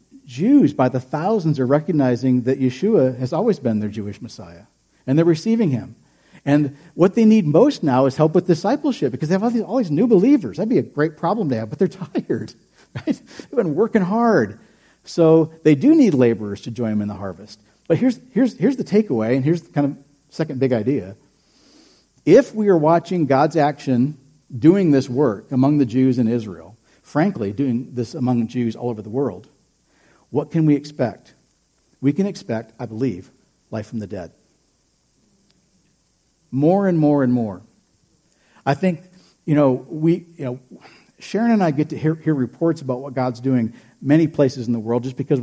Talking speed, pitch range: 190 wpm, 125-165 Hz